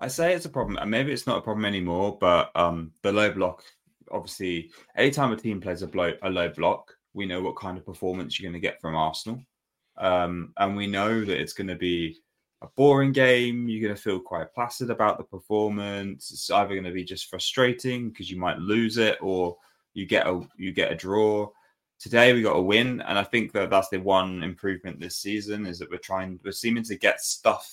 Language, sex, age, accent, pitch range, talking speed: English, male, 20-39, British, 85-105 Hz, 225 wpm